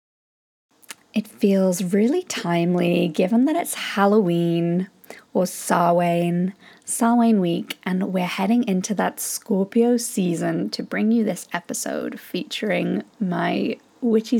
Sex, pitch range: female, 180-230 Hz